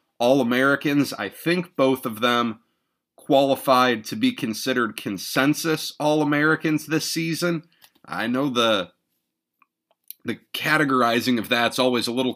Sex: male